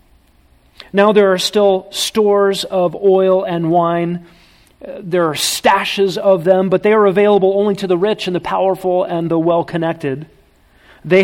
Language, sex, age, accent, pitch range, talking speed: English, male, 40-59, American, 150-190 Hz, 160 wpm